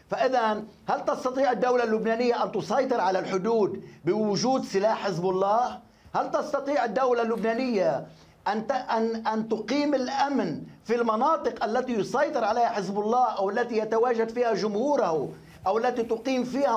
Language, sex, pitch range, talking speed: Arabic, male, 215-265 Hz, 135 wpm